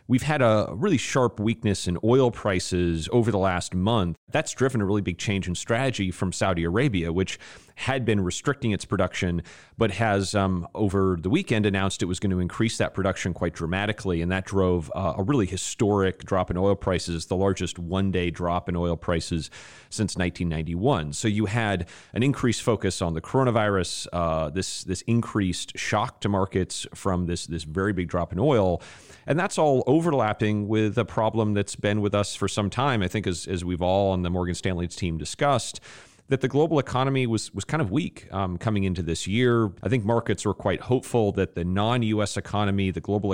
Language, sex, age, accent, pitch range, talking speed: English, male, 30-49, American, 90-110 Hz, 200 wpm